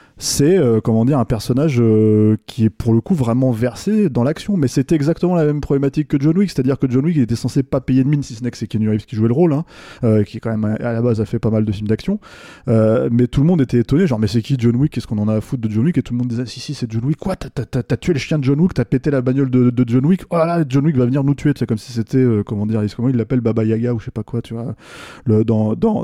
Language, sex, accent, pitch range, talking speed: French, male, French, 115-145 Hz, 335 wpm